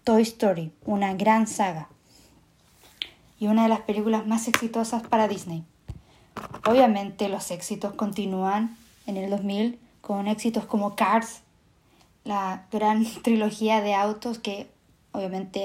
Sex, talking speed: female, 125 wpm